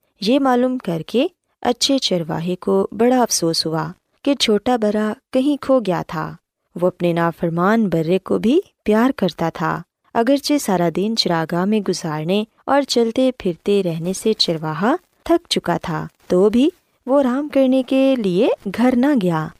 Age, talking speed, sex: 20-39, 155 wpm, female